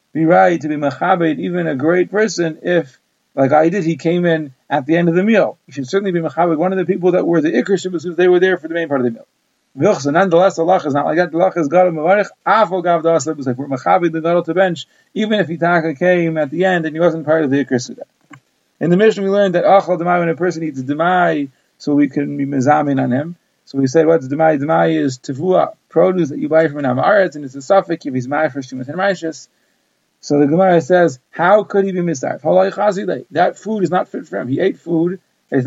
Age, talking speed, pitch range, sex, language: 30-49, 250 wpm, 150-185 Hz, male, English